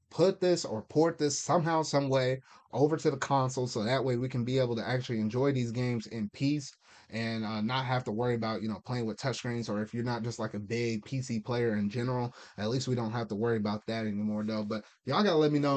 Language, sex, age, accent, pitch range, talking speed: English, male, 20-39, American, 115-140 Hz, 255 wpm